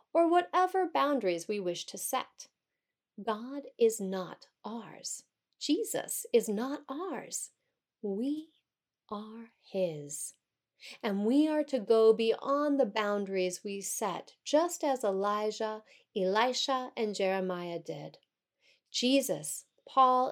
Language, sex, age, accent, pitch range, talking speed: English, female, 40-59, American, 200-270 Hz, 110 wpm